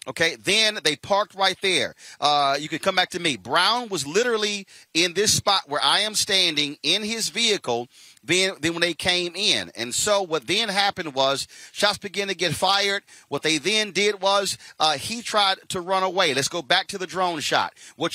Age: 40-59